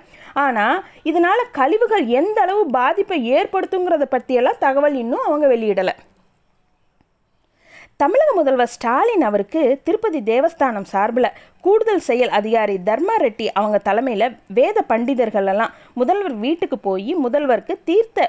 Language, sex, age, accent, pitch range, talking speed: Tamil, female, 20-39, native, 230-330 Hz, 90 wpm